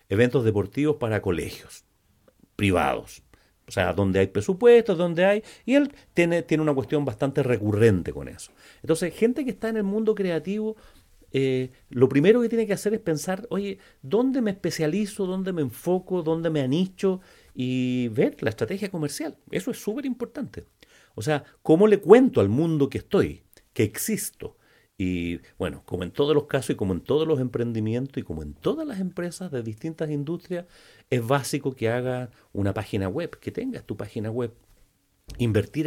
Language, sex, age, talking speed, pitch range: Spanish, male, 40-59, 175 wpm, 105-165 Hz